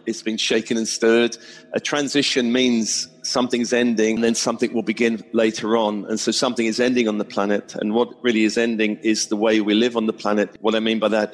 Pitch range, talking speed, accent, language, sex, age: 110-120 Hz, 230 wpm, British, English, male, 40-59